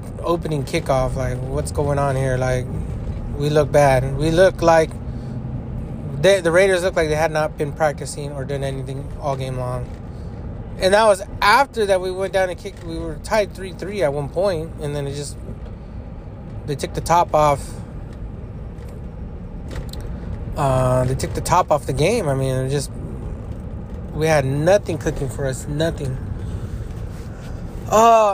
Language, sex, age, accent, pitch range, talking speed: English, male, 20-39, American, 125-175 Hz, 165 wpm